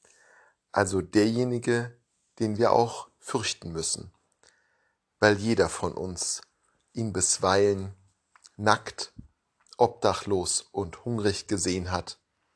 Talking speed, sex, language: 90 wpm, male, German